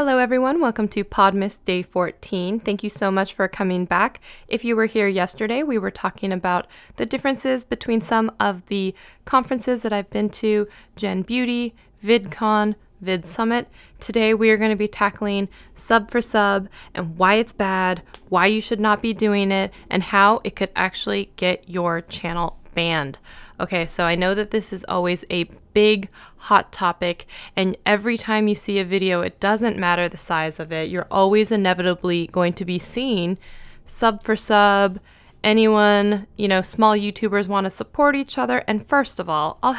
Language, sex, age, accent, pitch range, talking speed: English, female, 20-39, American, 185-225 Hz, 180 wpm